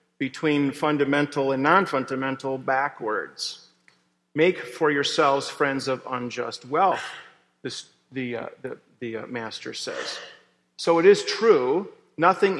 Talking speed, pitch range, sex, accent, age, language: 110 wpm, 120-145 Hz, male, American, 40-59, English